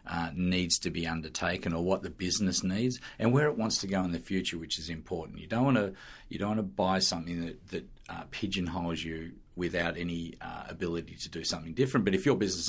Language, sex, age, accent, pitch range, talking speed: English, male, 40-59, Australian, 85-95 Hz, 230 wpm